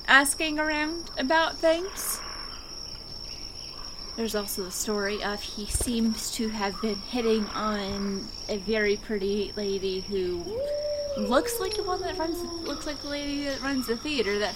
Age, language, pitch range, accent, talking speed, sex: 20-39, English, 200-295 Hz, American, 155 wpm, female